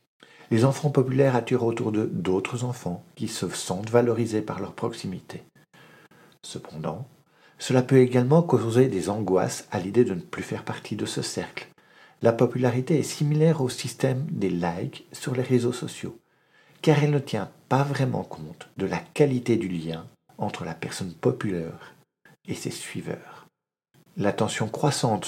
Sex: male